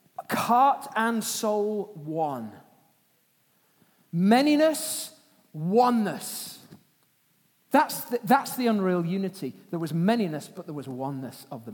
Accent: British